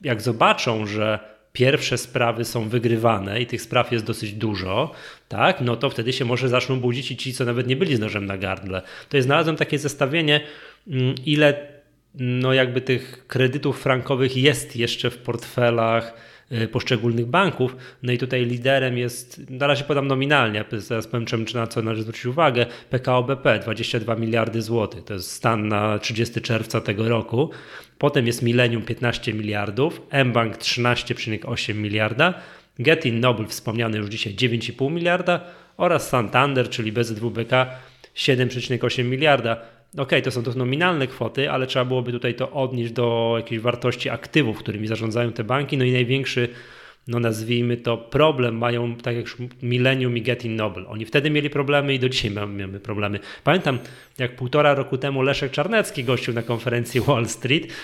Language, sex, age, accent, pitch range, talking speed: Polish, male, 20-39, native, 115-135 Hz, 165 wpm